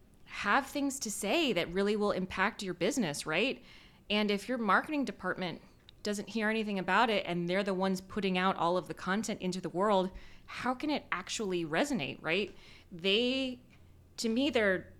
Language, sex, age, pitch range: English, female, 20-39, 155-205 Hz